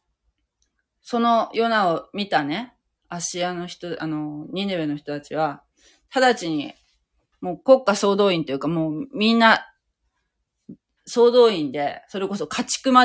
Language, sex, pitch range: Japanese, female, 150-220 Hz